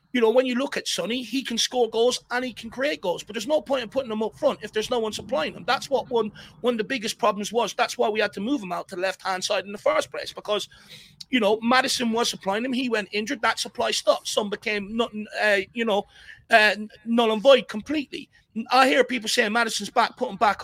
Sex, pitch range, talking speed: male, 210-255 Hz, 255 wpm